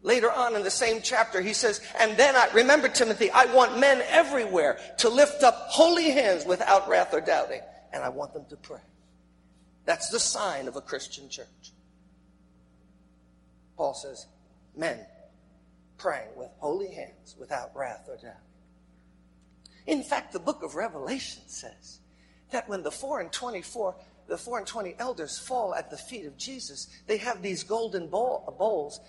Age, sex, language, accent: 50-69, male, English, American